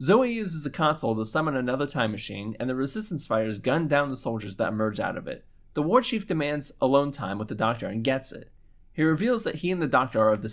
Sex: male